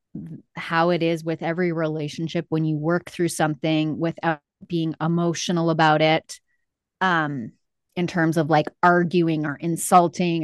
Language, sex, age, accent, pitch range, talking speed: English, female, 20-39, American, 160-190 Hz, 140 wpm